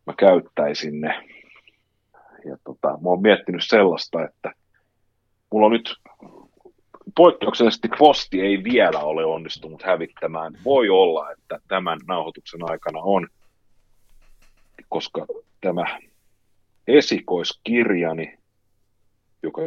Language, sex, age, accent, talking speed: Finnish, male, 40-59, native, 95 wpm